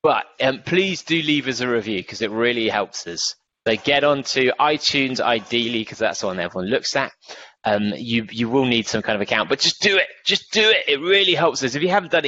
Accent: British